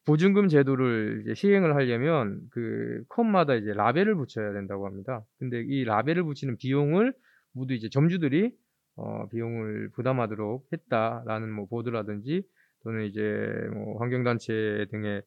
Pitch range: 115-160 Hz